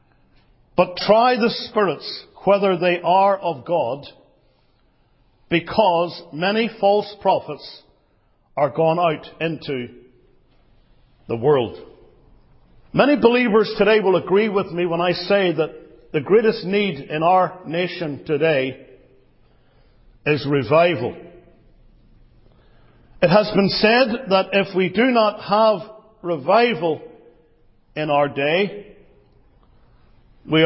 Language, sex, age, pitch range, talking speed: English, male, 50-69, 150-205 Hz, 105 wpm